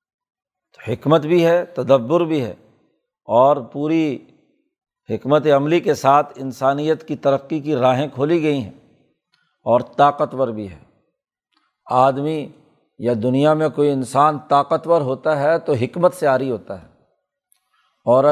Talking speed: 130 wpm